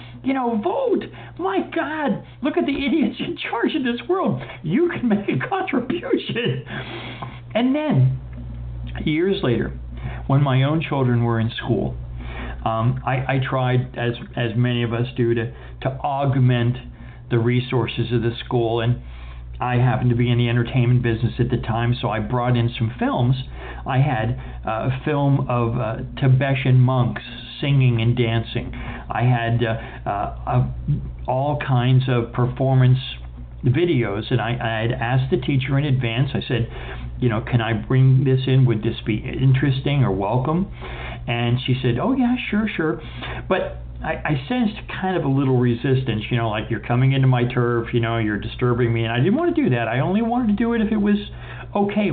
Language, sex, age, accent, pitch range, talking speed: English, male, 50-69, American, 115-135 Hz, 180 wpm